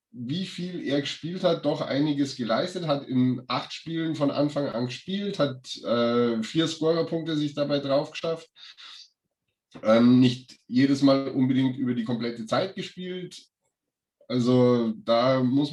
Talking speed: 140 wpm